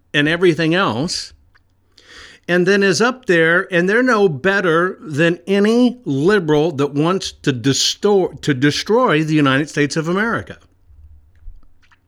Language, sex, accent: English, male, American